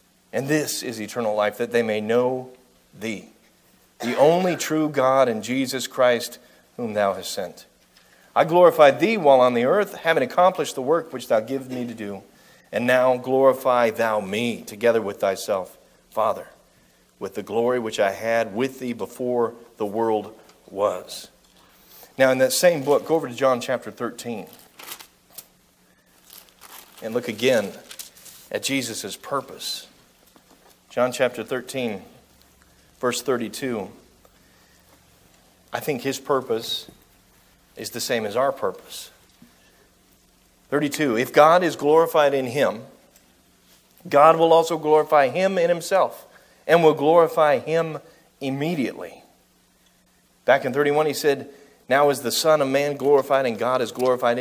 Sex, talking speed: male, 140 wpm